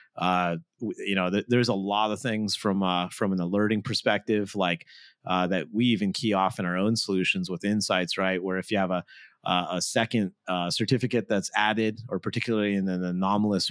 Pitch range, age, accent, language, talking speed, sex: 95-115 Hz, 30-49, American, English, 200 wpm, male